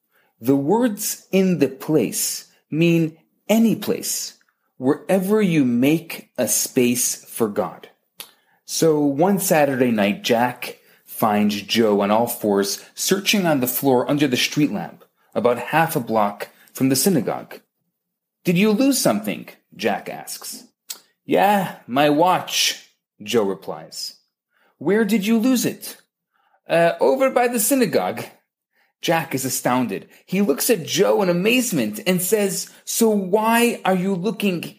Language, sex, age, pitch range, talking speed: English, male, 30-49, 145-215 Hz, 135 wpm